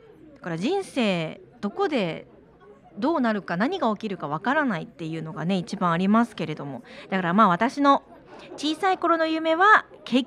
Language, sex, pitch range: Japanese, female, 200-295 Hz